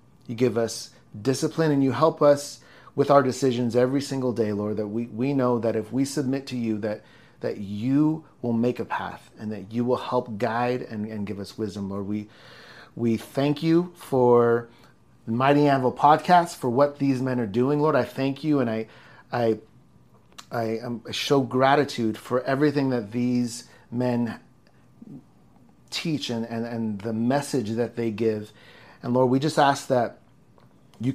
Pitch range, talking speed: 115-135 Hz, 175 wpm